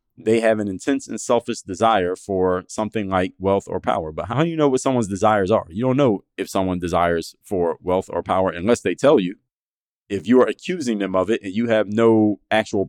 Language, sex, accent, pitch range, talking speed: English, male, American, 100-120 Hz, 225 wpm